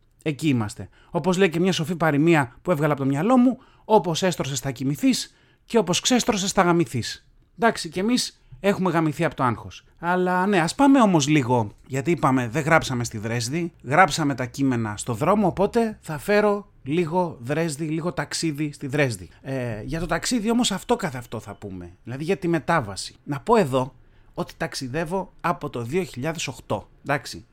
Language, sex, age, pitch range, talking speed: Greek, male, 30-49, 130-190 Hz, 170 wpm